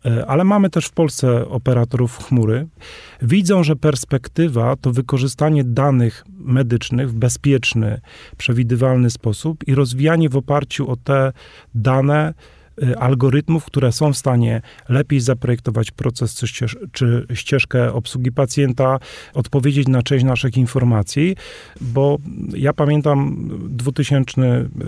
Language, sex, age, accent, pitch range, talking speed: Polish, male, 40-59, native, 120-140 Hz, 110 wpm